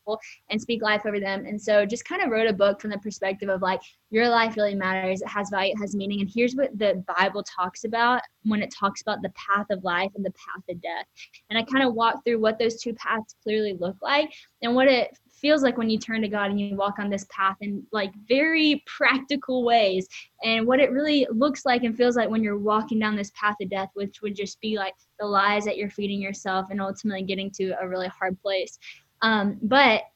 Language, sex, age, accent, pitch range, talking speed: English, female, 10-29, American, 200-240 Hz, 240 wpm